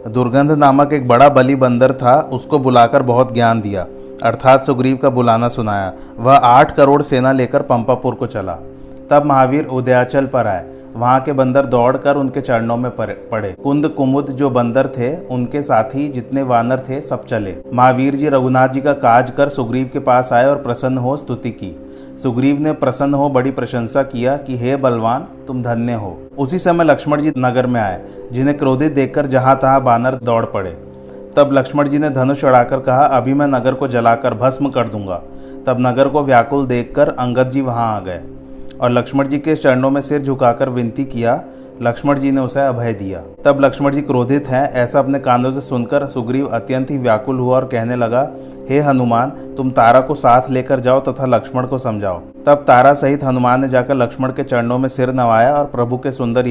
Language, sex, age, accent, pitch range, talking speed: Hindi, male, 30-49, native, 120-140 Hz, 195 wpm